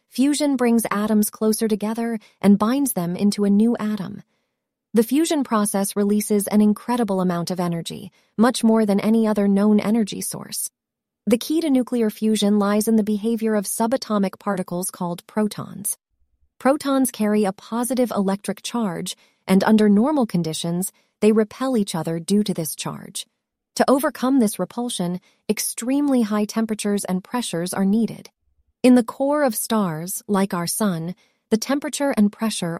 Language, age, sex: English, 30-49, female